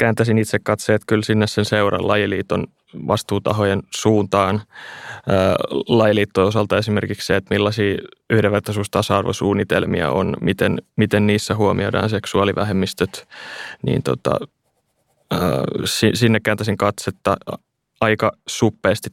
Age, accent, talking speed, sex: 20-39, native, 100 wpm, male